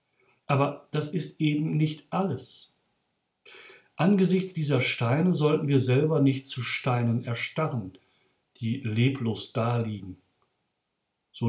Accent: German